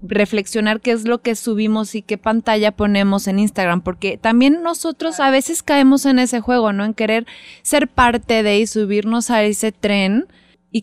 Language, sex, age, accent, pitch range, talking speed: Spanish, female, 20-39, Mexican, 205-245 Hz, 185 wpm